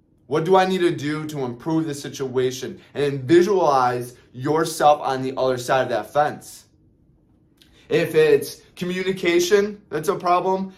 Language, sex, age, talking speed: English, male, 20-39, 145 wpm